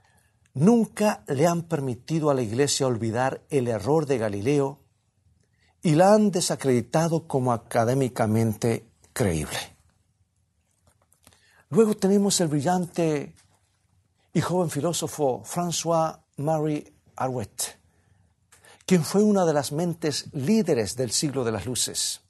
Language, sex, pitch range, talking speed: Spanish, male, 105-160 Hz, 110 wpm